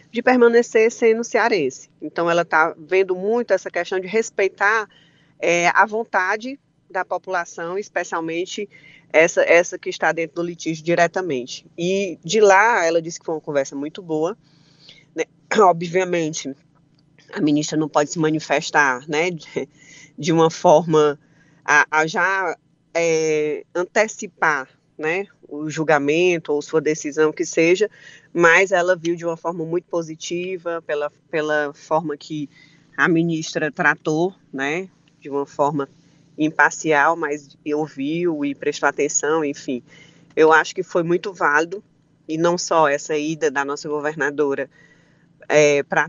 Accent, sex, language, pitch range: Brazilian, female, Portuguese, 155-180 Hz